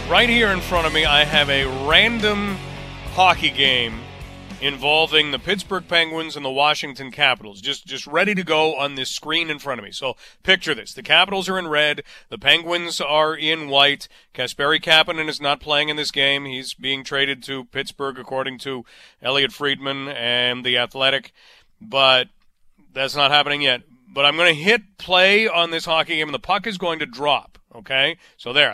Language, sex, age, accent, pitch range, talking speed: English, male, 40-59, American, 140-185 Hz, 190 wpm